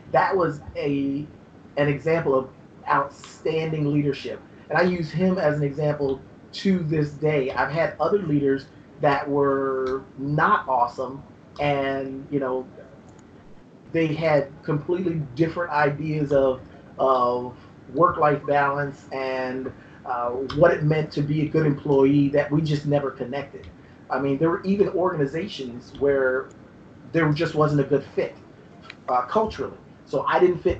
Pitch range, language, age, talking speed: 135-160 Hz, English, 30-49, 140 wpm